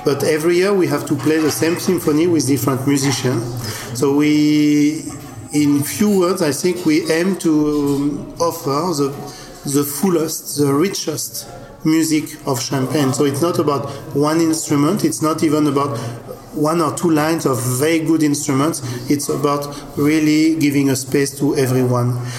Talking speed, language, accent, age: 155 wpm, English, French, 40-59